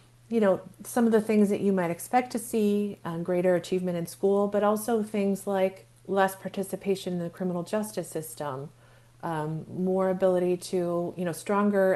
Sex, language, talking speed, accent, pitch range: female, English, 175 wpm, American, 160-190 Hz